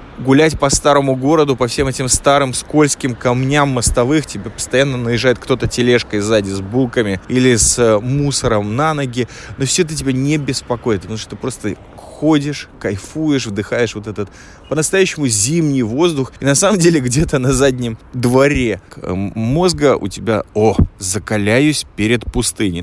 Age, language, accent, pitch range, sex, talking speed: 20-39, Russian, native, 105-135 Hz, male, 150 wpm